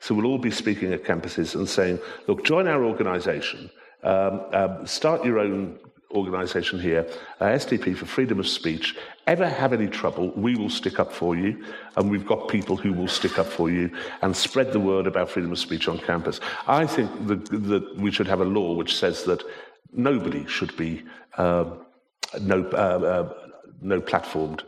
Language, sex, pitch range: English, male, 95-120 Hz